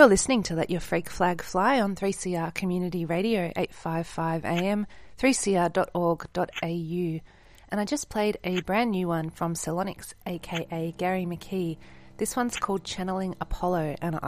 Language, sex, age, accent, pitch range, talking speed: English, female, 30-49, Australian, 165-200 Hz, 140 wpm